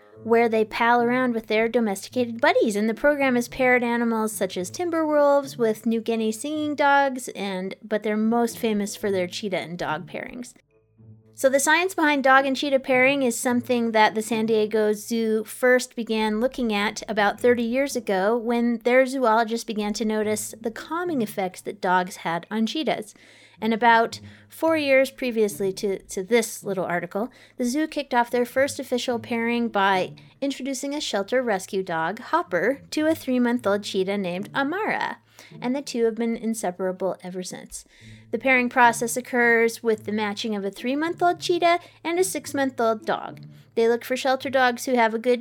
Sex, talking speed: female, 175 wpm